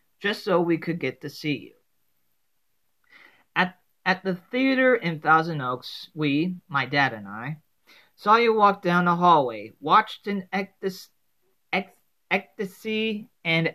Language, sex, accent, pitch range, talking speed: English, male, American, 145-200 Hz, 130 wpm